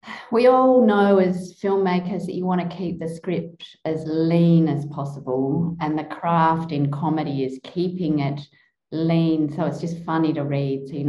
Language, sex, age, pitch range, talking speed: English, female, 40-59, 150-185 Hz, 180 wpm